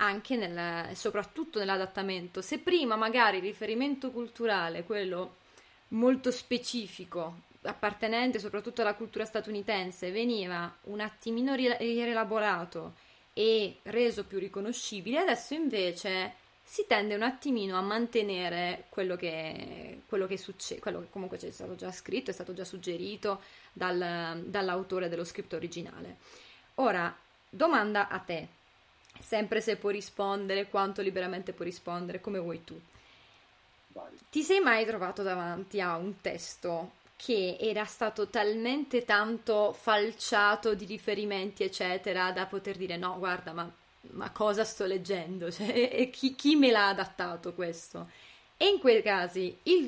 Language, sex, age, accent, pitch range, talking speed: Italian, female, 20-39, native, 180-225 Hz, 130 wpm